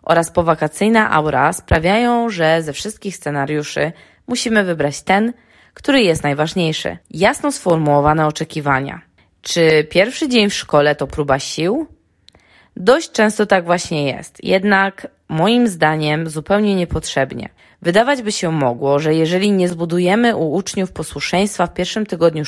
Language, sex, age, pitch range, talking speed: Polish, female, 20-39, 155-200 Hz, 130 wpm